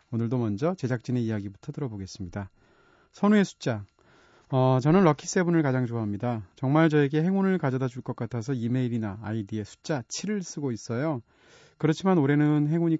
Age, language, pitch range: 30-49, Korean, 110-150 Hz